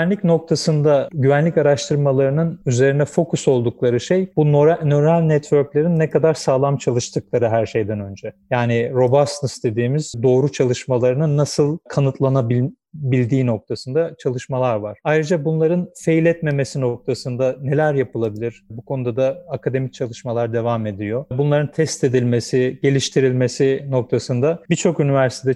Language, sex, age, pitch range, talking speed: Turkish, male, 40-59, 120-150 Hz, 115 wpm